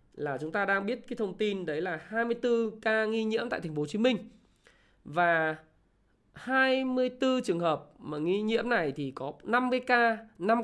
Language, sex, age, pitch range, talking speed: Vietnamese, male, 20-39, 155-210 Hz, 185 wpm